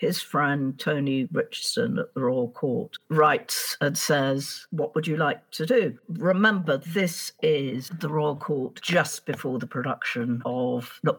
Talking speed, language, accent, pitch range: 155 wpm, English, British, 125-155 Hz